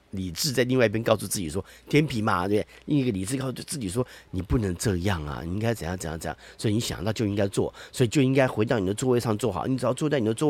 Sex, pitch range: male, 95-140 Hz